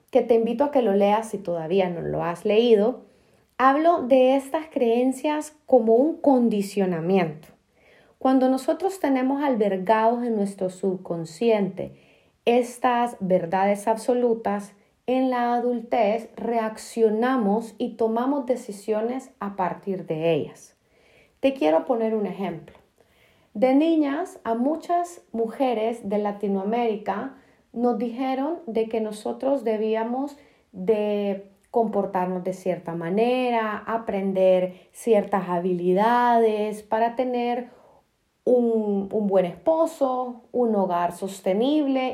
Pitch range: 200-260 Hz